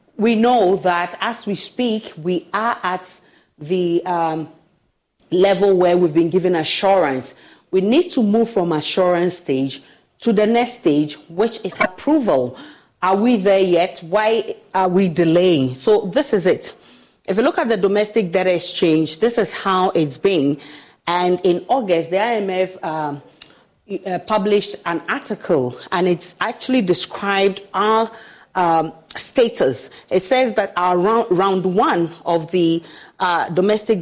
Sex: female